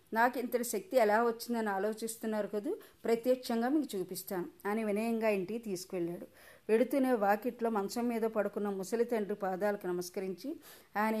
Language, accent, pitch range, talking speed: Telugu, native, 200-235 Hz, 125 wpm